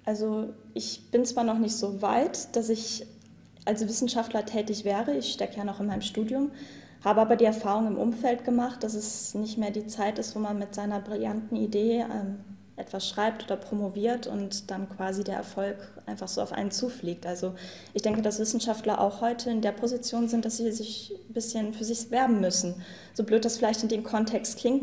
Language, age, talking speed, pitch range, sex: German, 10-29, 200 wpm, 200-230 Hz, female